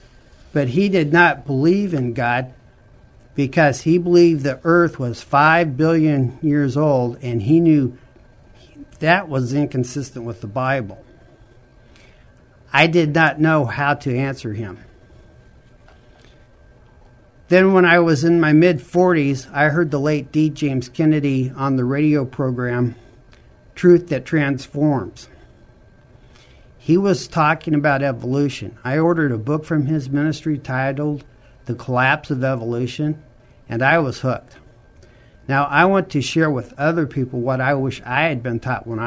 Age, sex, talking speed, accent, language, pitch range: 50-69, male, 140 wpm, American, English, 120-155 Hz